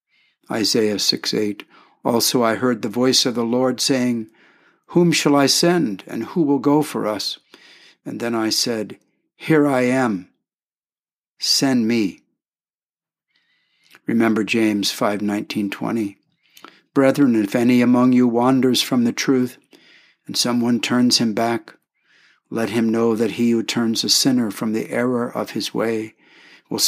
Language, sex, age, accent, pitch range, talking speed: English, male, 60-79, American, 115-135 Hz, 145 wpm